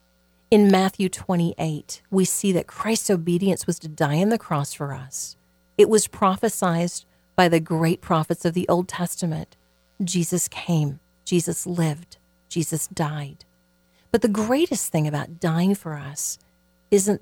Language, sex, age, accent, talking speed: English, female, 40-59, American, 145 wpm